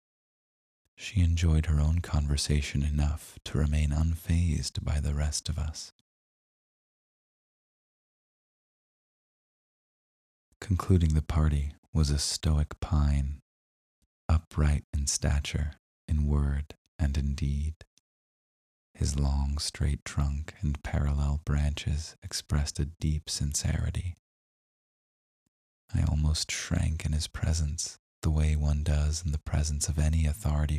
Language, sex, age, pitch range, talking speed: English, male, 30-49, 70-80 Hz, 110 wpm